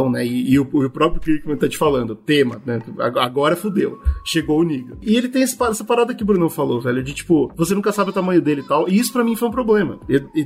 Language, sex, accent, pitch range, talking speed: Portuguese, male, Brazilian, 150-210 Hz, 265 wpm